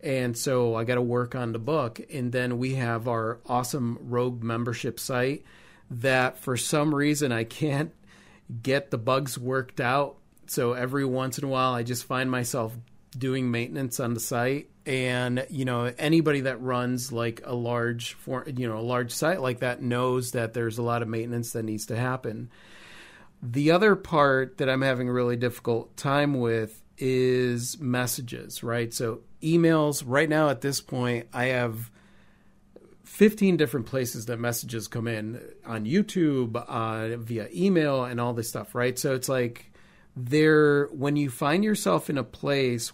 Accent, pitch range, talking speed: American, 120-140 Hz, 170 wpm